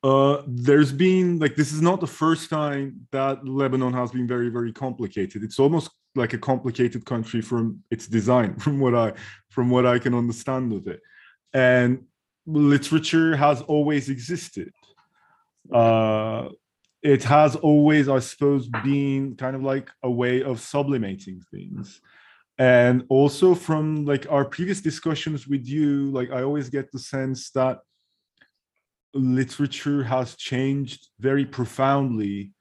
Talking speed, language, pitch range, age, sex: 140 wpm, English, 115-140 Hz, 20-39, male